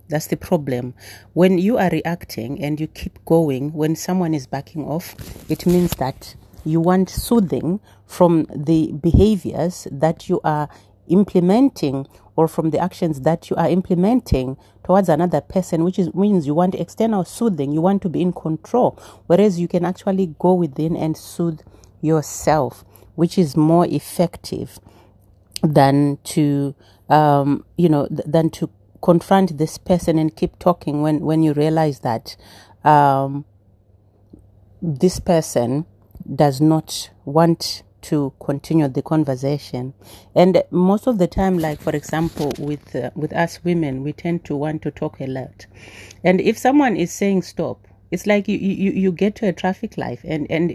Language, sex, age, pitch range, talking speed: English, female, 40-59, 140-180 Hz, 155 wpm